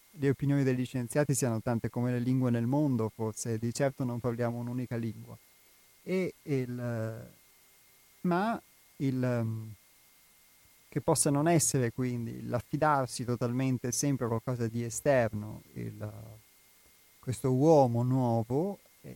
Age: 30-49